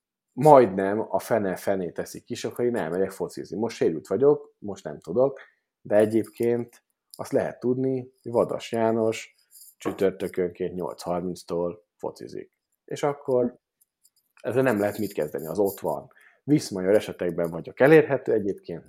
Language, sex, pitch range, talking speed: Hungarian, male, 90-120 Hz, 130 wpm